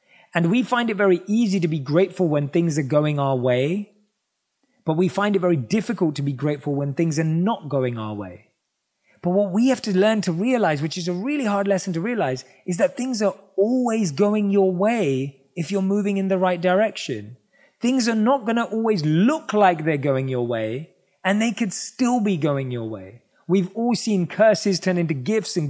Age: 30-49